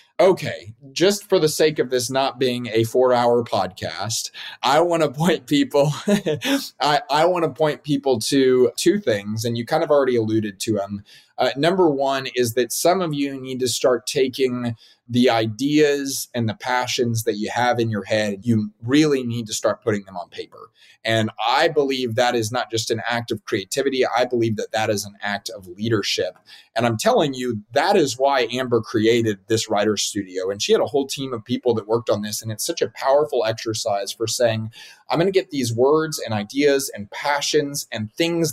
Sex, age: male, 30-49